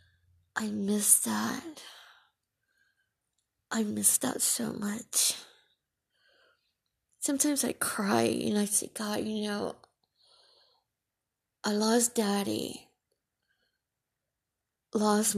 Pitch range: 185-245 Hz